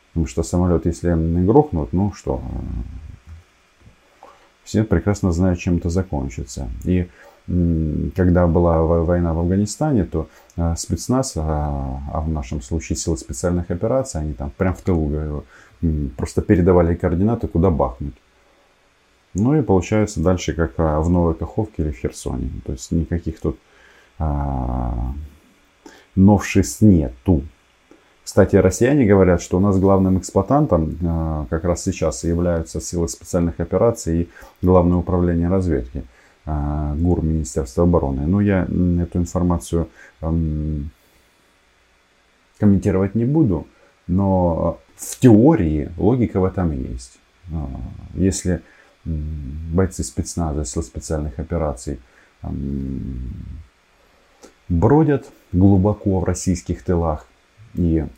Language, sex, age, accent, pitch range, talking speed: Russian, male, 20-39, native, 80-95 Hz, 110 wpm